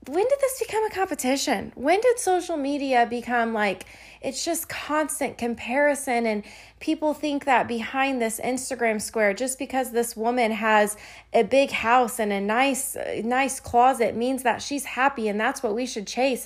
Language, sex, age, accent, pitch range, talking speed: English, female, 20-39, American, 205-240 Hz, 170 wpm